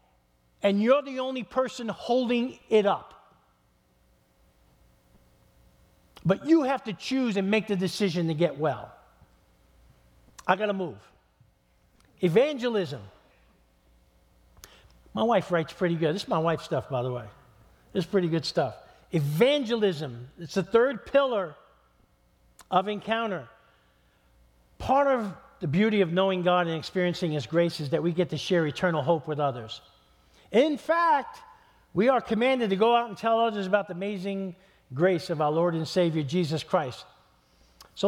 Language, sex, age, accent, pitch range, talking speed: English, male, 50-69, American, 130-205 Hz, 150 wpm